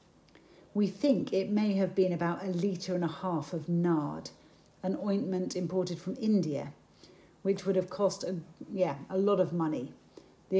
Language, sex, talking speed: English, female, 170 wpm